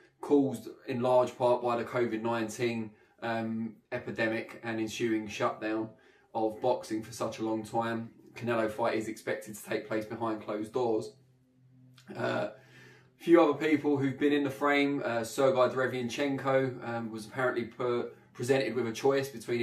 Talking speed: 155 wpm